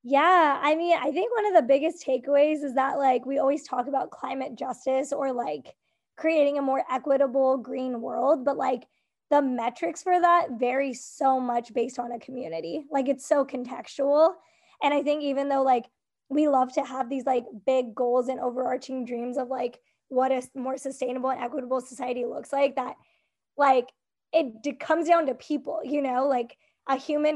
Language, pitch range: English, 255-290 Hz